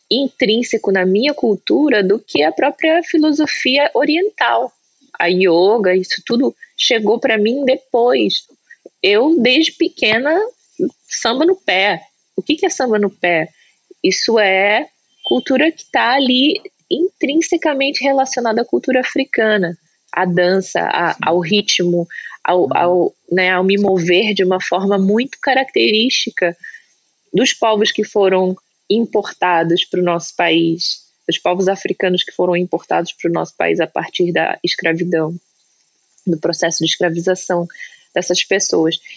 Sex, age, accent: female, 20-39, Brazilian